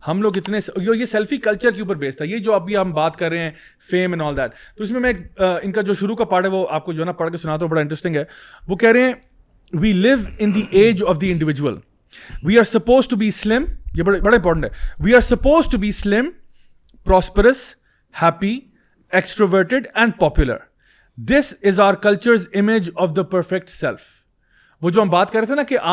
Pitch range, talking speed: 175-230 Hz, 195 wpm